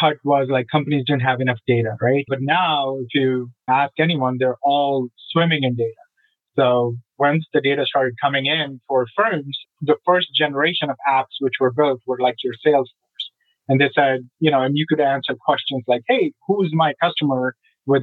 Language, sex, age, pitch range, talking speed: English, male, 30-49, 135-160 Hz, 190 wpm